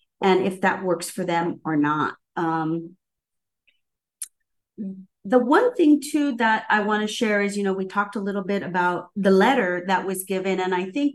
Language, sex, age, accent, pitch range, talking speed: English, female, 40-59, American, 180-220 Hz, 190 wpm